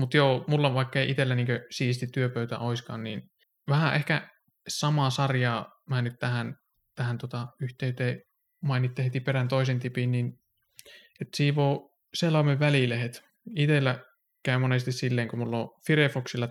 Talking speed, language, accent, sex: 140 wpm, Finnish, native, male